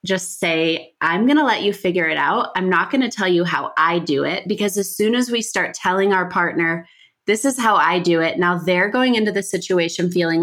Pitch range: 175-230 Hz